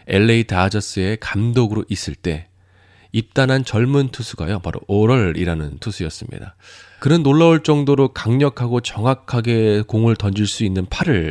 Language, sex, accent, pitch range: Korean, male, native, 95-140 Hz